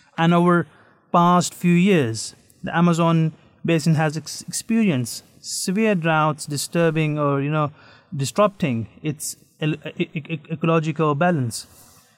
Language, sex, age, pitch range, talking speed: English, male, 30-49, 150-180 Hz, 115 wpm